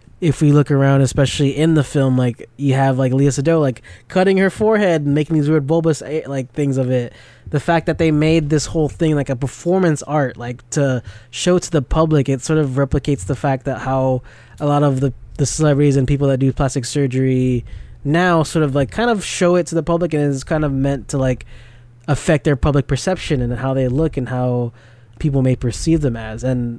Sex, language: male, English